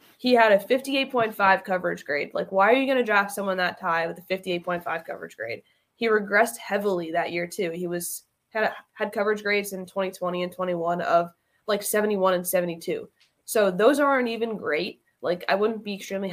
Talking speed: 190 wpm